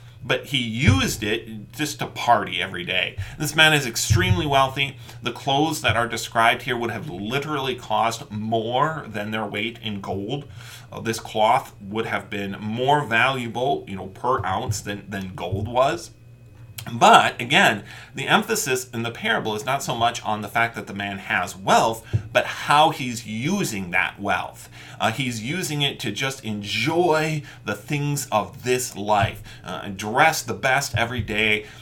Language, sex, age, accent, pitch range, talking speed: English, male, 30-49, American, 110-135 Hz, 170 wpm